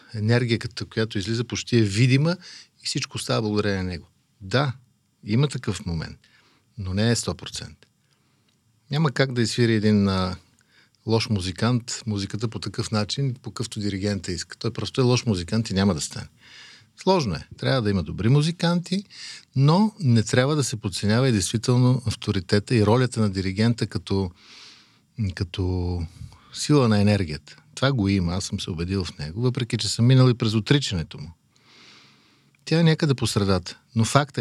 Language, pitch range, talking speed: Bulgarian, 100-125 Hz, 165 wpm